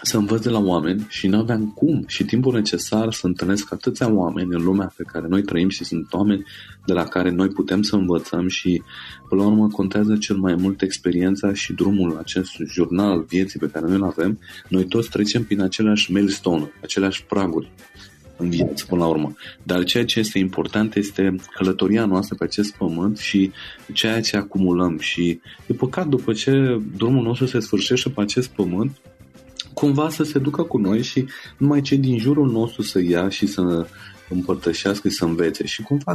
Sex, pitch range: male, 90-120 Hz